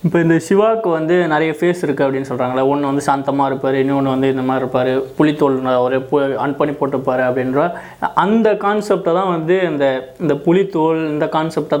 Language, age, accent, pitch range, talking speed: Tamil, 20-39, native, 135-165 Hz, 170 wpm